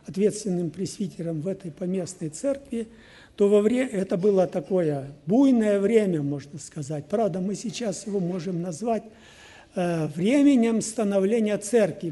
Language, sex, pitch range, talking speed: Russian, male, 170-235 Hz, 130 wpm